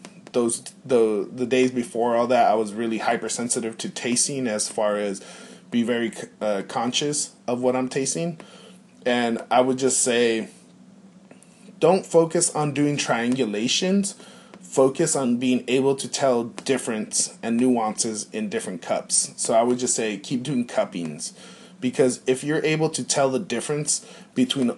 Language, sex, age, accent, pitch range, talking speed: English, male, 20-39, American, 120-170 Hz, 155 wpm